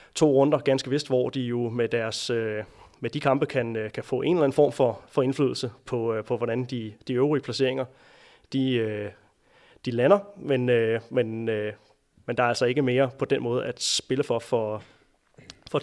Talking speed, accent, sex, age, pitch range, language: 165 wpm, native, male, 30-49, 115-140 Hz, Danish